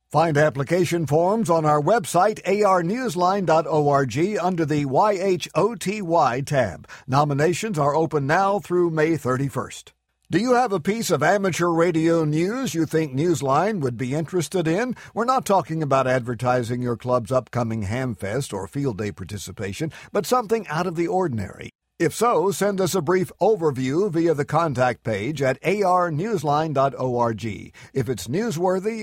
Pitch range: 135-185 Hz